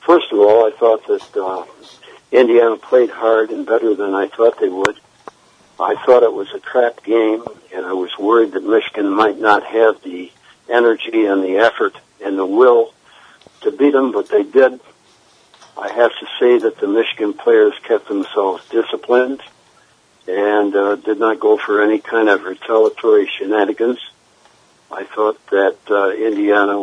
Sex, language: male, English